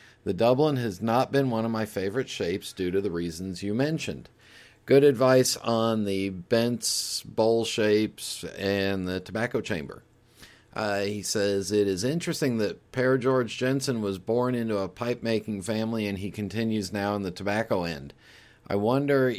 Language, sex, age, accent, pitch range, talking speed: English, male, 40-59, American, 95-120 Hz, 165 wpm